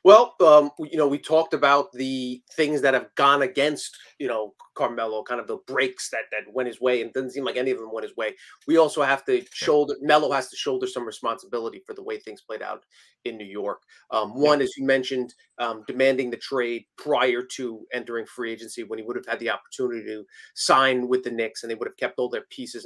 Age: 30-49